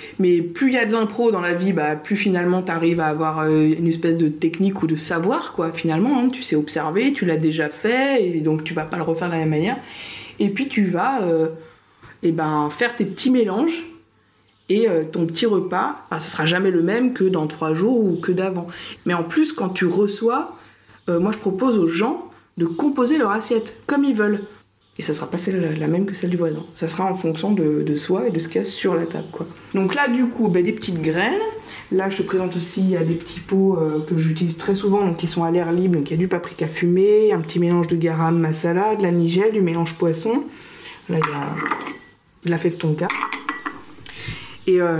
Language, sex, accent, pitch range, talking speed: French, female, French, 165-205 Hz, 240 wpm